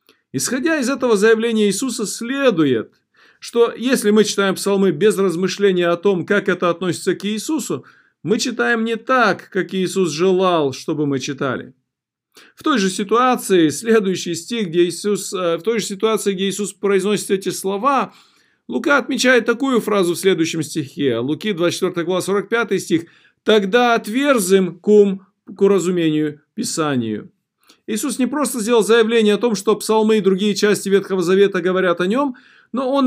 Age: 40-59